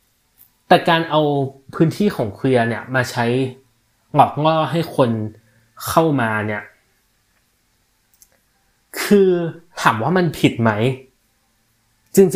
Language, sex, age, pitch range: Thai, male, 20-39, 115-150 Hz